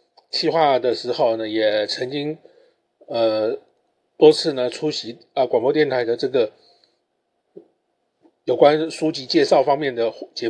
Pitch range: 130-180 Hz